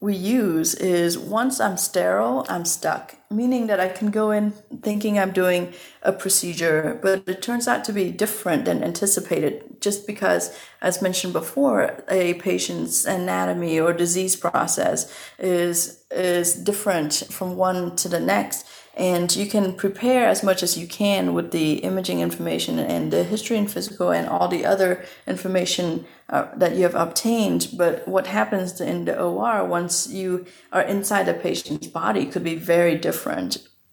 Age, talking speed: 30-49, 165 wpm